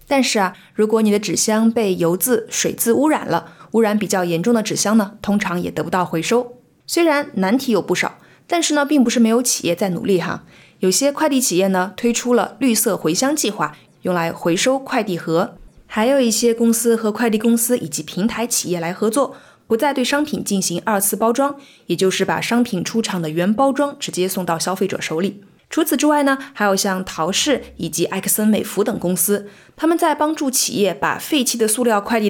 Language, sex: Chinese, female